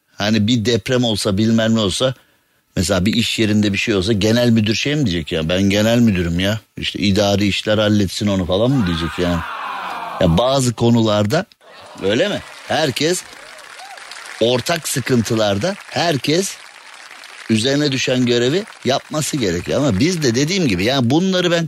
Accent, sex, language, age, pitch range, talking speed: native, male, Turkish, 50-69, 110-150 Hz, 155 wpm